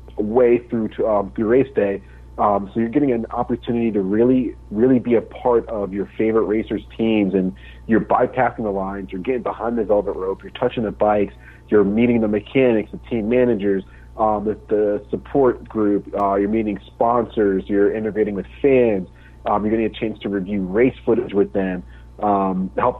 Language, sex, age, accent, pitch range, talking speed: English, male, 40-59, American, 95-115 Hz, 190 wpm